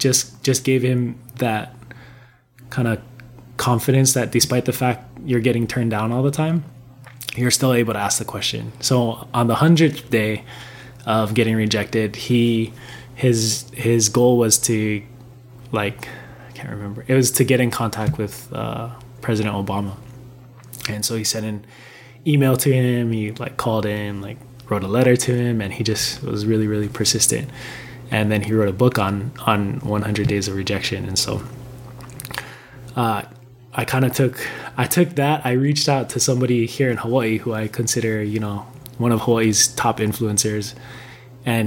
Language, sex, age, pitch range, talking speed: English, male, 20-39, 110-125 Hz, 175 wpm